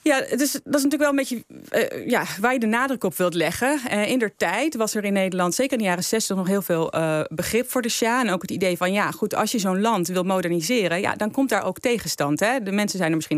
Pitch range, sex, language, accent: 170-225 Hz, female, Dutch, Dutch